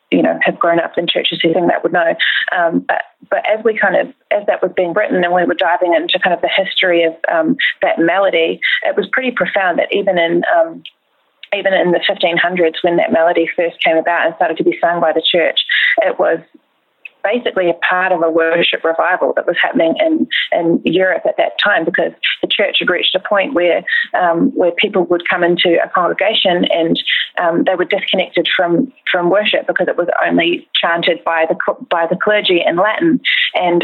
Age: 30-49